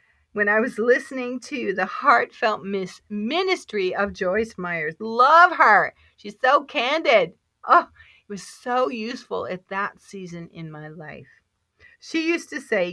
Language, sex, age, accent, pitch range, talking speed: English, female, 40-59, American, 180-240 Hz, 145 wpm